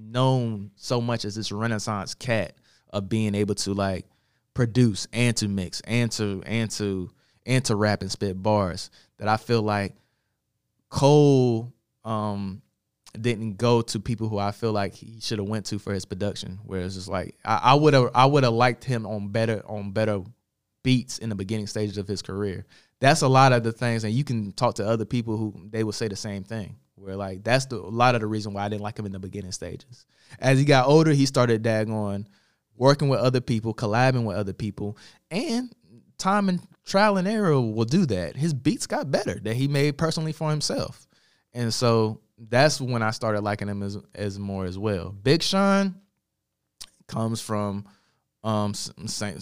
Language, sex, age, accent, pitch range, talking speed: English, male, 20-39, American, 105-125 Hz, 200 wpm